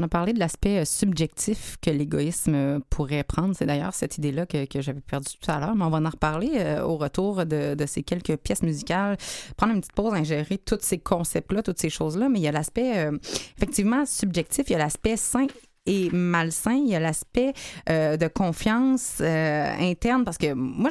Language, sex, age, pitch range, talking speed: French, female, 30-49, 165-230 Hz, 205 wpm